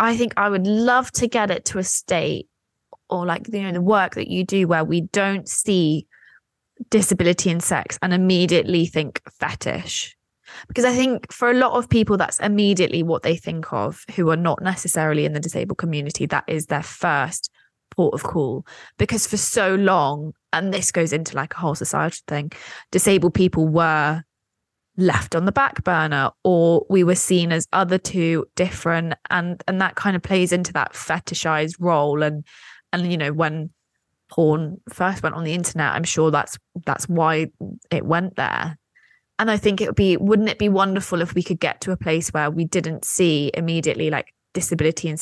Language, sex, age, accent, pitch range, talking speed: English, female, 20-39, British, 160-190 Hz, 190 wpm